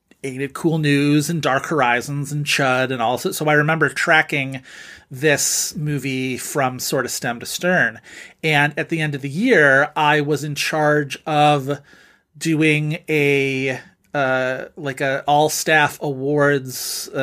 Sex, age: male, 30-49